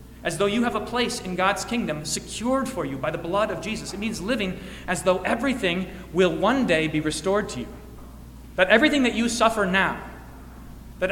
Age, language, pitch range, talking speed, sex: 30-49, English, 145-205 Hz, 200 wpm, male